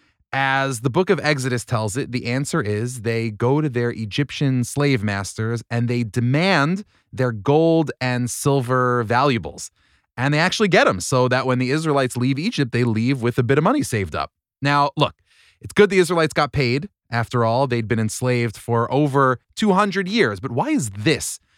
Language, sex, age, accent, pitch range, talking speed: English, male, 30-49, American, 115-140 Hz, 185 wpm